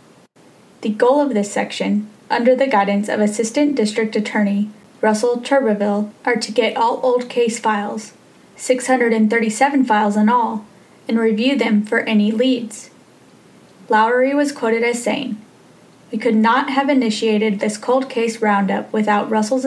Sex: female